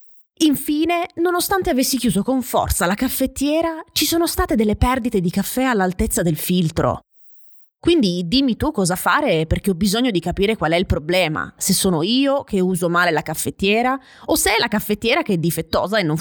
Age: 20-39